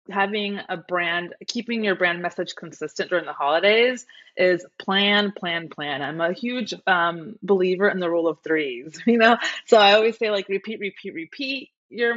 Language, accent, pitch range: English, American, 170-210 Hz